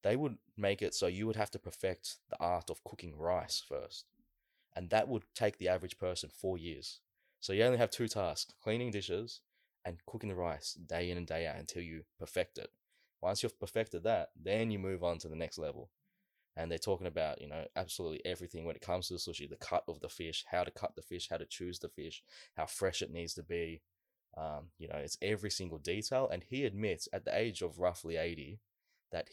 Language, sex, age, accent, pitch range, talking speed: English, male, 20-39, Australian, 85-105 Hz, 225 wpm